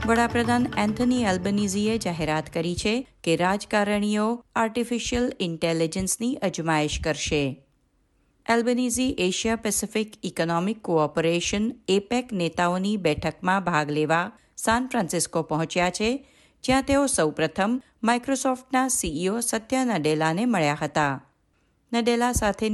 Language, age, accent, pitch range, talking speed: Gujarati, 50-69, native, 165-230 Hz, 95 wpm